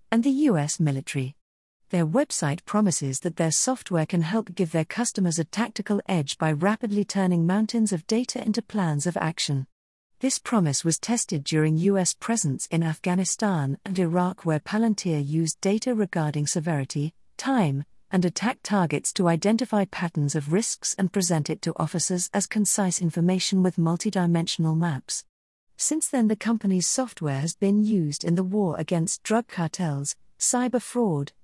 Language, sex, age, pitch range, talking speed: English, female, 50-69, 160-210 Hz, 155 wpm